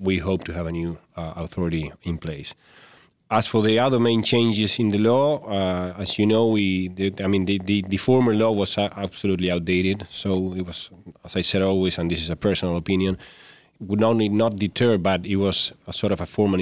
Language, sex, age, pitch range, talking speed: English, male, 30-49, 90-105 Hz, 220 wpm